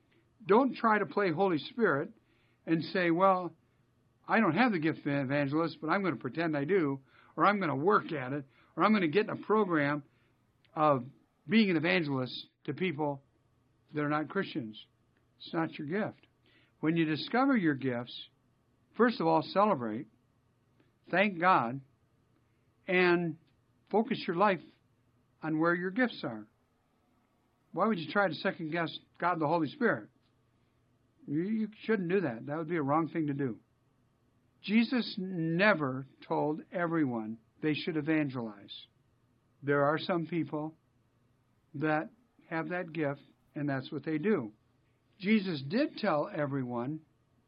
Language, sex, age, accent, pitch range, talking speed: English, male, 60-79, American, 120-175 Hz, 150 wpm